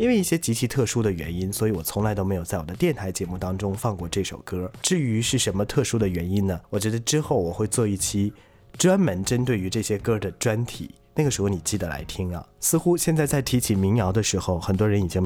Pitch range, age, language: 95-120 Hz, 20-39, Chinese